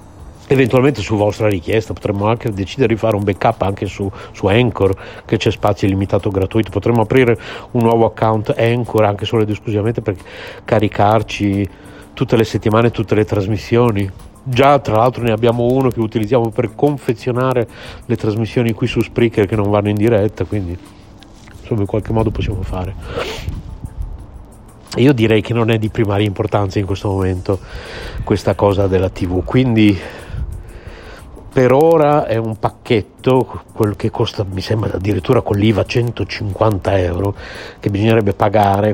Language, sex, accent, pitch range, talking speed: Italian, male, native, 100-115 Hz, 155 wpm